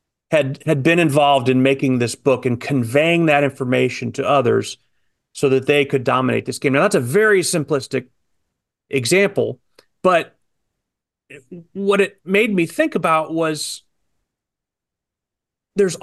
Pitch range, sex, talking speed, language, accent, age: 130-170 Hz, male, 135 wpm, English, American, 30-49